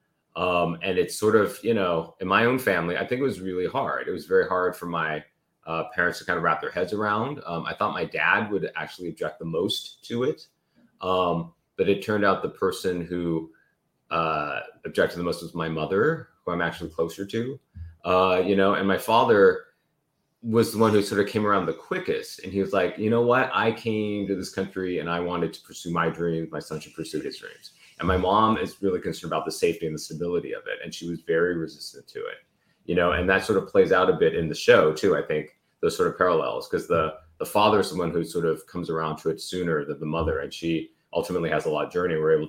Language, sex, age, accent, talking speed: English, male, 30-49, American, 245 wpm